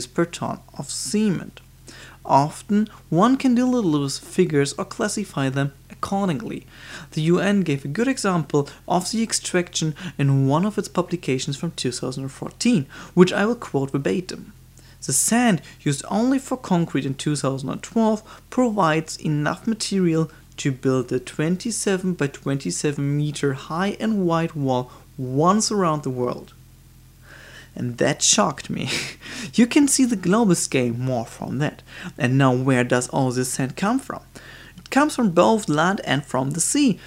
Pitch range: 140-200 Hz